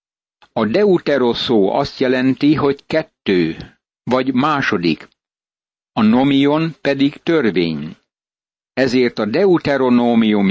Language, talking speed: Hungarian, 85 wpm